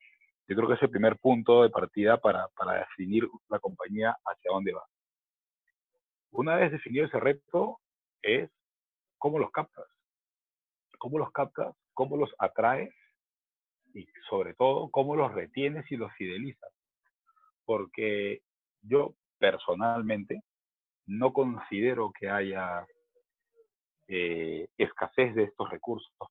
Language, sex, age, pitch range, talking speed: English, male, 40-59, 100-155 Hz, 120 wpm